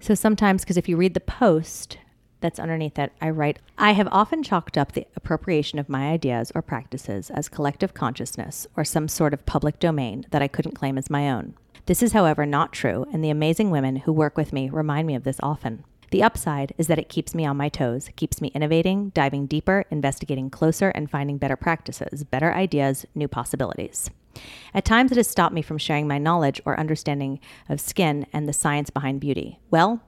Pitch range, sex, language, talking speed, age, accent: 140-170 Hz, female, English, 205 wpm, 40-59, American